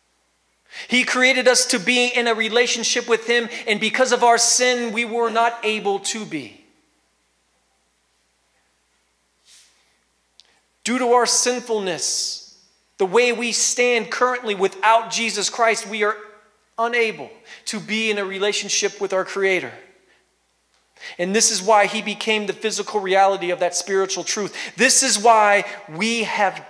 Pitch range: 165-225 Hz